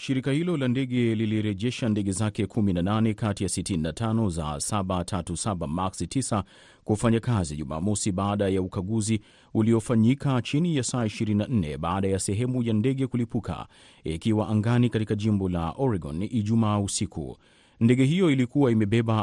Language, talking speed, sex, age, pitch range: Swahili, 135 wpm, male, 30-49, 100-120 Hz